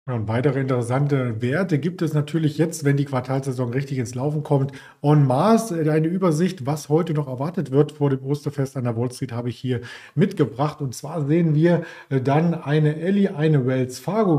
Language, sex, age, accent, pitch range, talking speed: German, male, 40-59, German, 130-155 Hz, 190 wpm